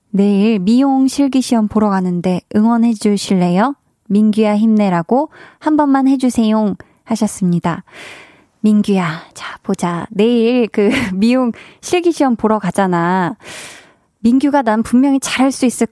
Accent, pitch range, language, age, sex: native, 195-255 Hz, Korean, 20-39, female